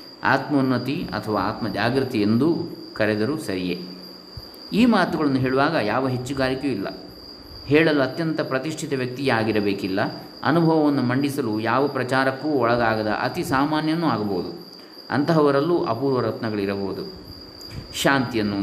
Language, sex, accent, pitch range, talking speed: Kannada, male, native, 105-130 Hz, 95 wpm